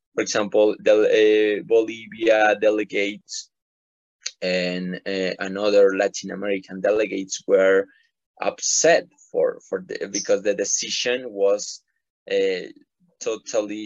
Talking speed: 100 wpm